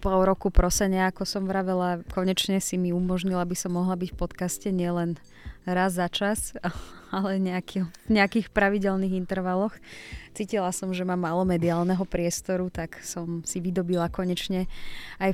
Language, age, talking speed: Slovak, 20-39, 155 wpm